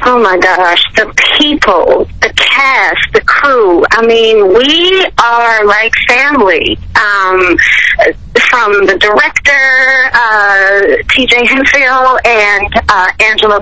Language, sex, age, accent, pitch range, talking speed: English, female, 40-59, American, 215-315 Hz, 110 wpm